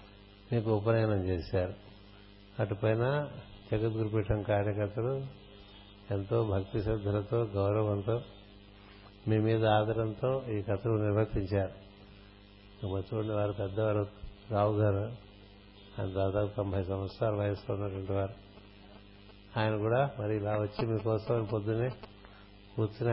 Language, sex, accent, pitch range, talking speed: Telugu, male, native, 100-115 Hz, 95 wpm